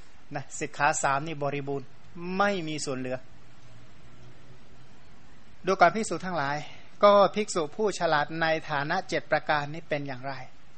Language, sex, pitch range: Thai, male, 140-170 Hz